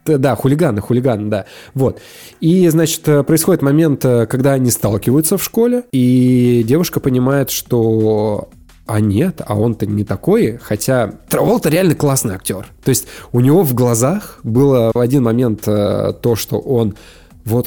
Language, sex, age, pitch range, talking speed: Russian, male, 20-39, 105-140 Hz, 150 wpm